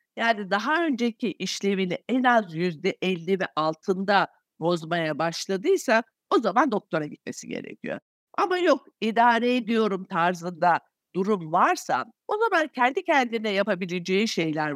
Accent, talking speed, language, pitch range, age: native, 120 wpm, Turkish, 165-230 Hz, 60-79